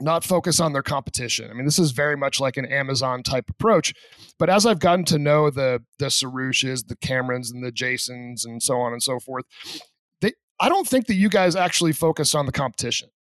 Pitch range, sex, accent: 130-170 Hz, male, American